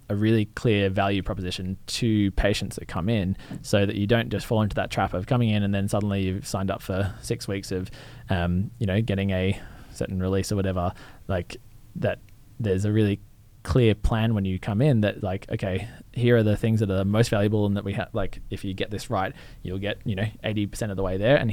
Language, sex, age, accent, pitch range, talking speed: English, male, 20-39, Australian, 95-110 Hz, 235 wpm